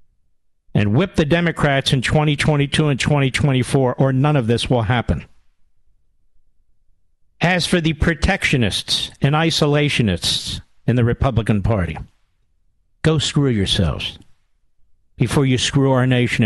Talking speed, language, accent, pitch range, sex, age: 115 wpm, English, American, 105-150 Hz, male, 50-69